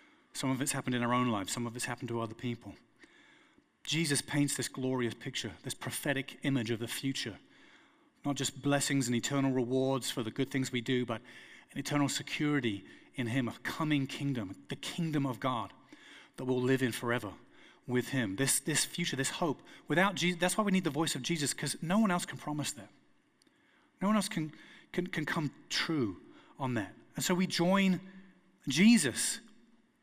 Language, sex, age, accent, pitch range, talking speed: English, male, 30-49, British, 135-185 Hz, 190 wpm